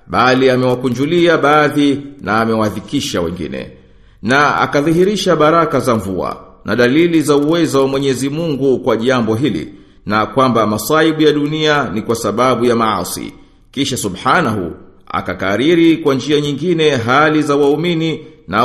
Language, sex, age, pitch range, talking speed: Swahili, male, 50-69, 125-160 Hz, 130 wpm